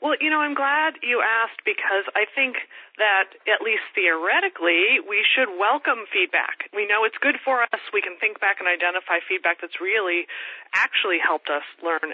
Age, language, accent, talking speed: 30-49, English, American, 185 wpm